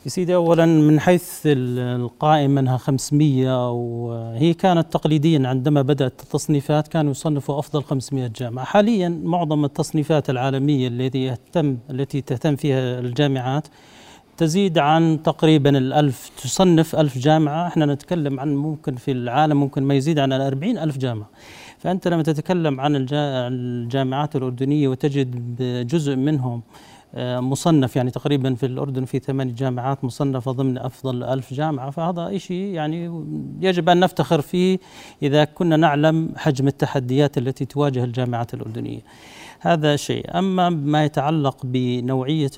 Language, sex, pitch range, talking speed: Arabic, male, 130-155 Hz, 130 wpm